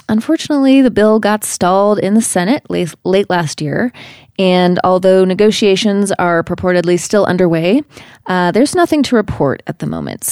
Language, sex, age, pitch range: English, female, 20-39, 165-225 Hz